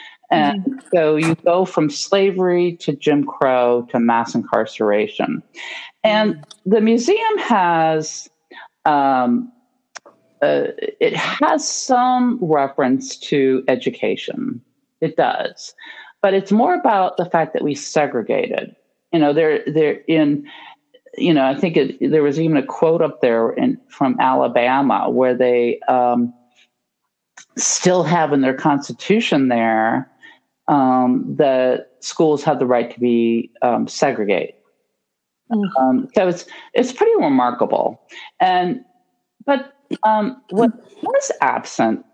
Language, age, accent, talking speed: English, 50-69, American, 120 wpm